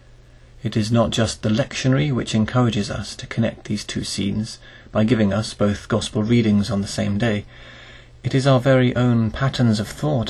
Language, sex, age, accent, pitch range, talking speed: English, male, 30-49, British, 105-125 Hz, 185 wpm